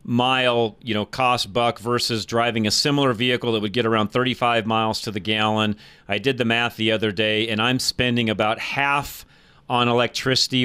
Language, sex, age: English, male, 40-59